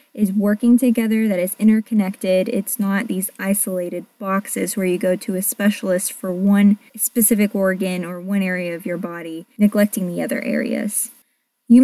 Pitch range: 195-240 Hz